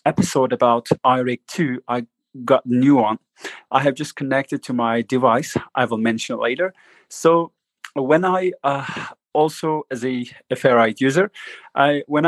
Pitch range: 125-155 Hz